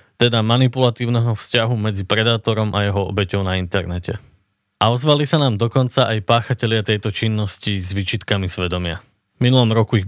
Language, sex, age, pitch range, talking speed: Slovak, male, 20-39, 100-125 Hz, 155 wpm